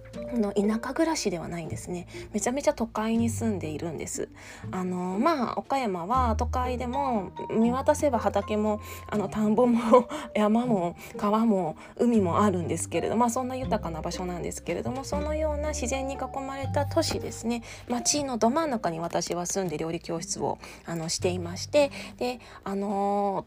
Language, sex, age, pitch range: Japanese, female, 20-39, 180-250 Hz